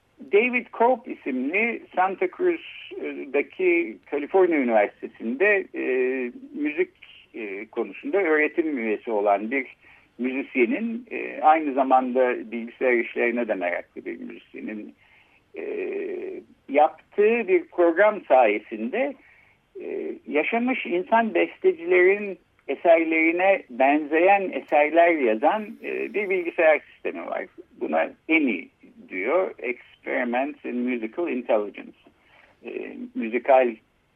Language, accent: Turkish, native